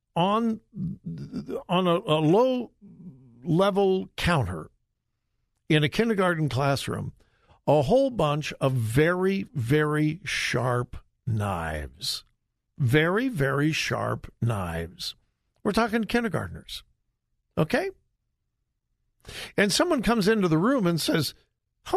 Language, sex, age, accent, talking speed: English, male, 50-69, American, 100 wpm